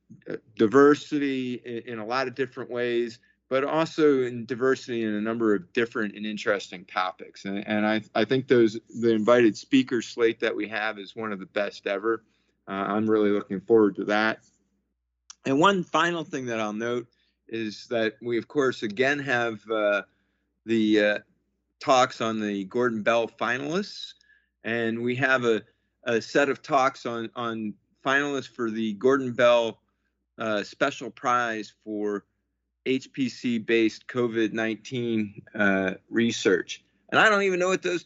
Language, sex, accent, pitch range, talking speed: English, male, American, 110-130 Hz, 155 wpm